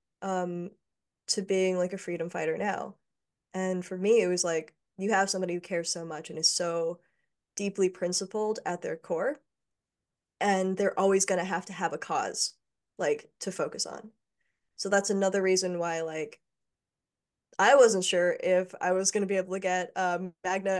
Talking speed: 180 wpm